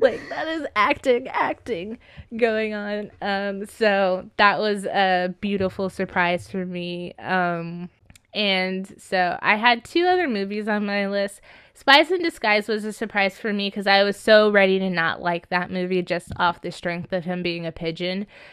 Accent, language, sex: American, English, female